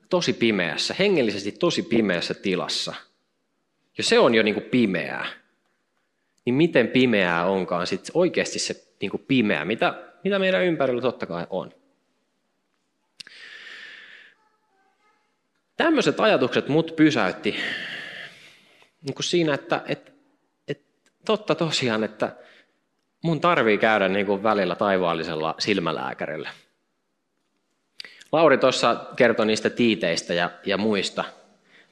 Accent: native